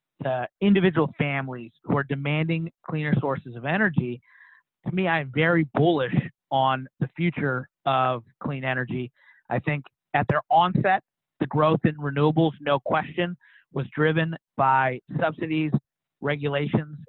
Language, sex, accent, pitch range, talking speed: English, male, American, 135-160 Hz, 125 wpm